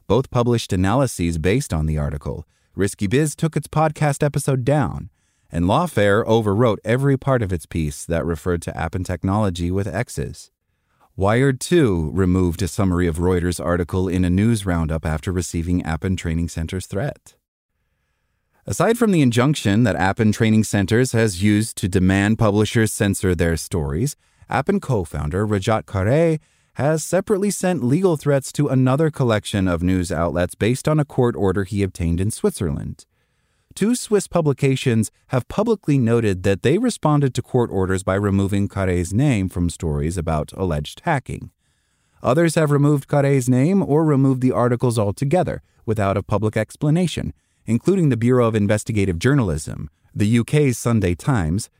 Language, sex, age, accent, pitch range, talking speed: English, male, 30-49, American, 90-135 Hz, 155 wpm